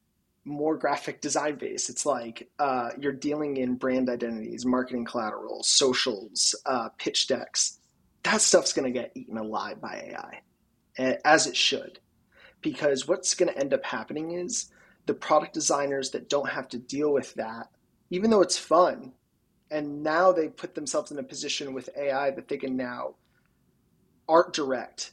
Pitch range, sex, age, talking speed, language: 135-175 Hz, male, 20-39, 160 wpm, English